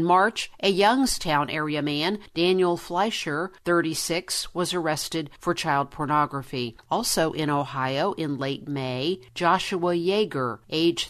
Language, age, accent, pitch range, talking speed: English, 50-69, American, 150-185 Hz, 125 wpm